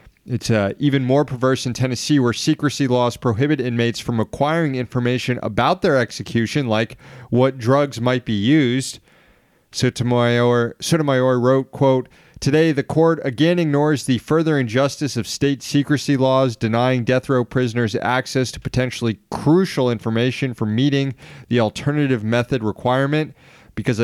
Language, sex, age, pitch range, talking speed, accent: English, male, 30-49, 115-140 Hz, 140 wpm, American